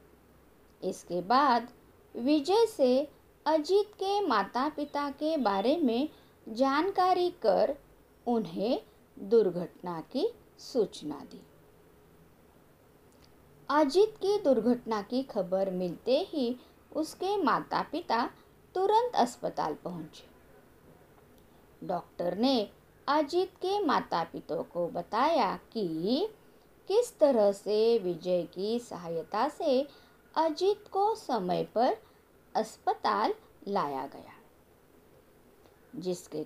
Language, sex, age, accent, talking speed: Marathi, female, 50-69, native, 90 wpm